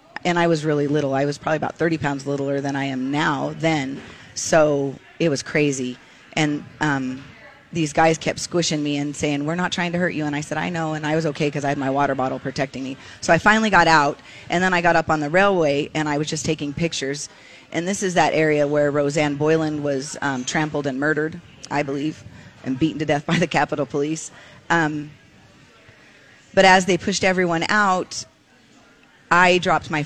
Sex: female